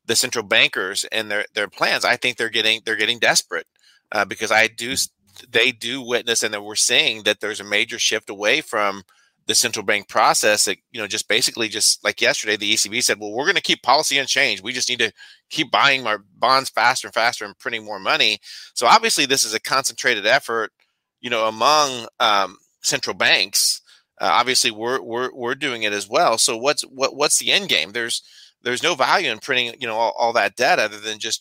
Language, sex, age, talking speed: English, male, 30-49, 215 wpm